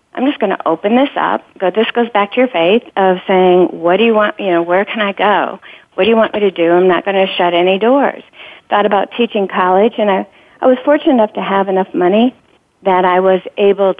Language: English